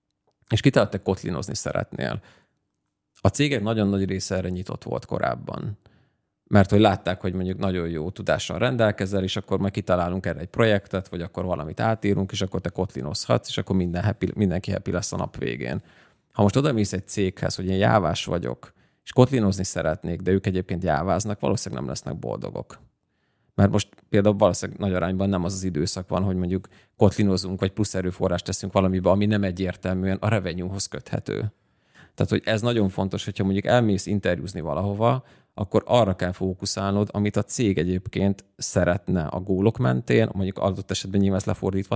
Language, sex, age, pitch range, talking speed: Hungarian, male, 30-49, 95-105 Hz, 170 wpm